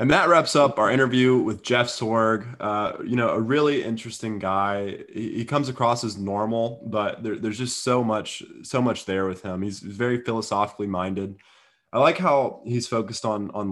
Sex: male